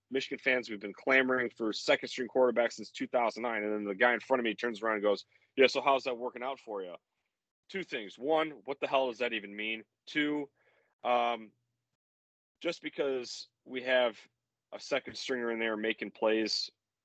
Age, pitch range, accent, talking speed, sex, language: 30-49, 110-130 Hz, American, 190 wpm, male, English